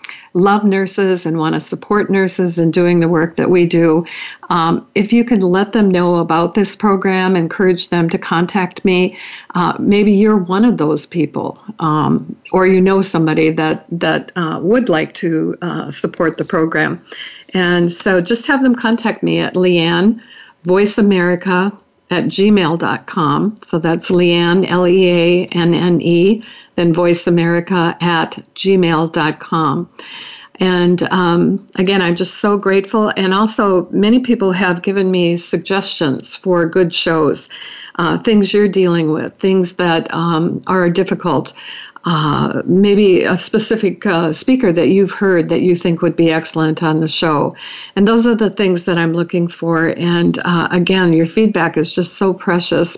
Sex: female